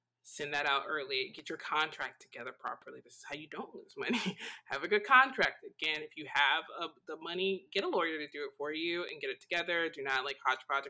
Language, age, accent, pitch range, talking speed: English, 20-39, American, 155-225 Hz, 230 wpm